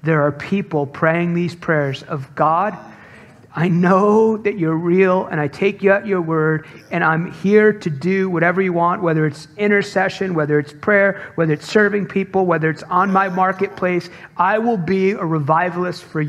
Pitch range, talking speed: 160-200 Hz, 180 wpm